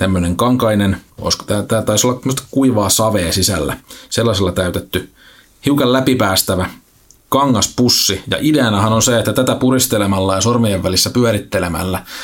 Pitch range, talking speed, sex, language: 95-115 Hz, 130 wpm, male, Finnish